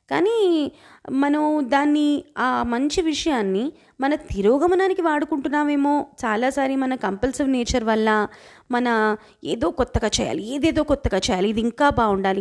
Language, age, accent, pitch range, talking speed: Telugu, 20-39, native, 235-315 Hz, 115 wpm